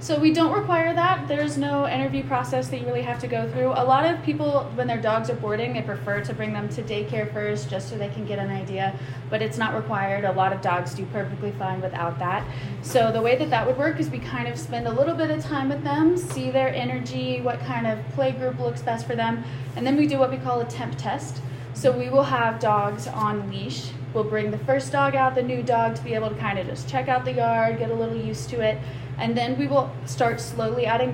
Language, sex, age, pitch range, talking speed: English, female, 20-39, 120-145 Hz, 260 wpm